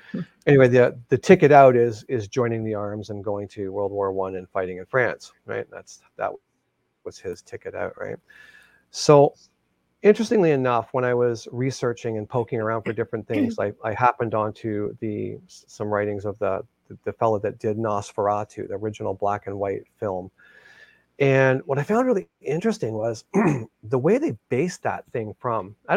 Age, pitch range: 40-59, 110-145 Hz